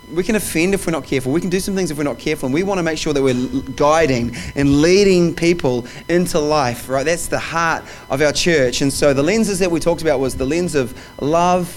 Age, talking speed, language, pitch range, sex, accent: 20-39, 250 wpm, English, 130-165 Hz, male, Australian